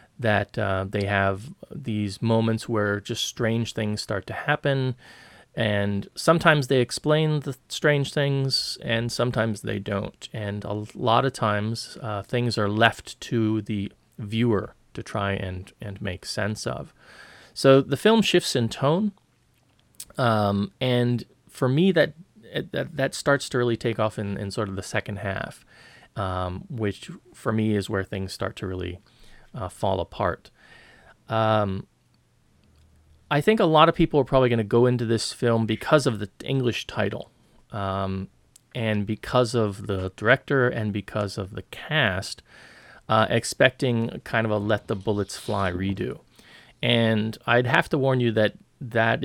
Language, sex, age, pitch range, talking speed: English, male, 30-49, 100-125 Hz, 160 wpm